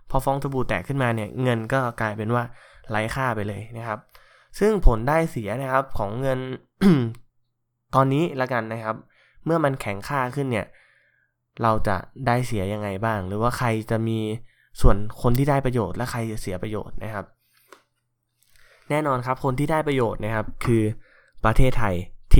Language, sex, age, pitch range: Thai, male, 20-39, 110-130 Hz